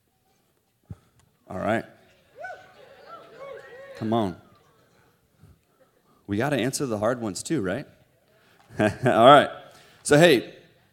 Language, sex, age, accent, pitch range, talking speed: English, male, 30-49, American, 115-150 Hz, 95 wpm